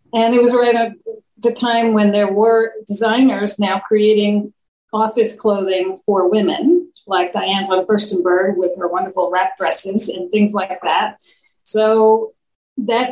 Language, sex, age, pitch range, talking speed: English, female, 50-69, 195-250 Hz, 145 wpm